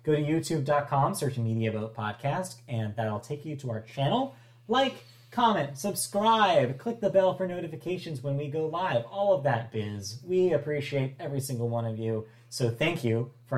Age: 30-49